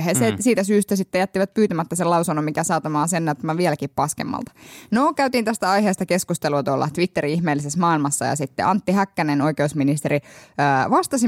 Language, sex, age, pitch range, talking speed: Finnish, female, 10-29, 155-215 Hz, 165 wpm